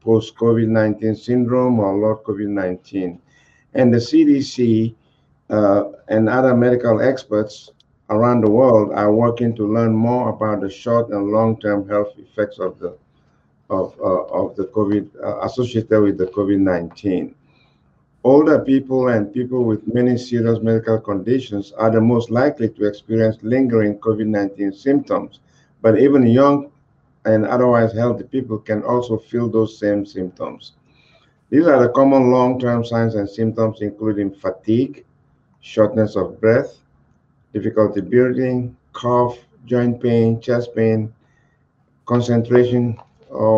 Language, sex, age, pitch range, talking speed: English, male, 60-79, 110-125 Hz, 130 wpm